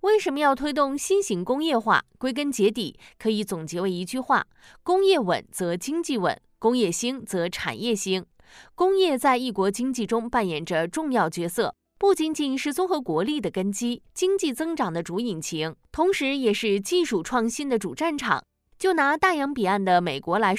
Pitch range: 195-280 Hz